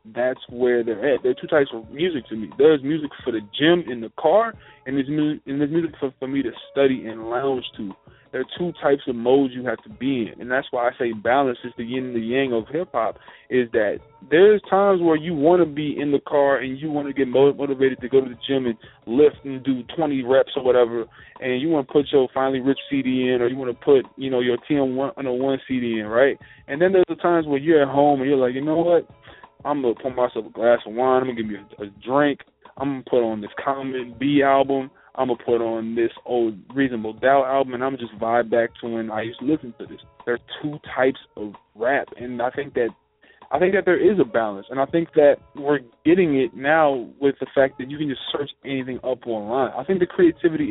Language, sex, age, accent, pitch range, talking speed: English, male, 20-39, American, 125-150 Hz, 260 wpm